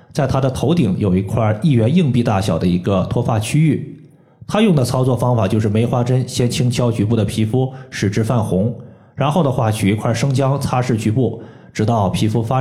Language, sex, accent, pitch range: Chinese, male, native, 110-145 Hz